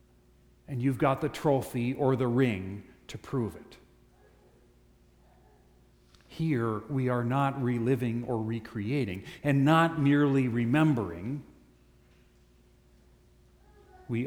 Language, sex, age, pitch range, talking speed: English, male, 50-69, 85-130 Hz, 95 wpm